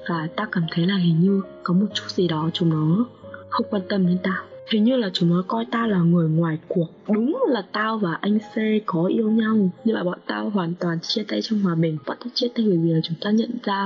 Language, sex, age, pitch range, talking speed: Vietnamese, female, 20-39, 175-230 Hz, 265 wpm